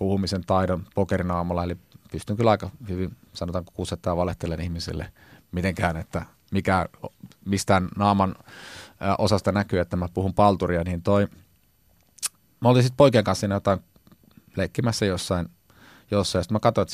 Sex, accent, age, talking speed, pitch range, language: male, native, 30-49, 135 wpm, 85-105 Hz, Finnish